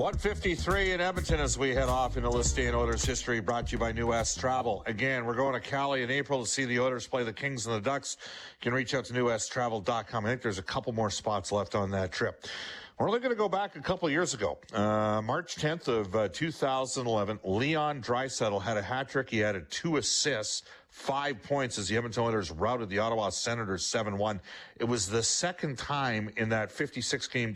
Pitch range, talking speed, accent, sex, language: 100-125 Hz, 215 wpm, American, male, English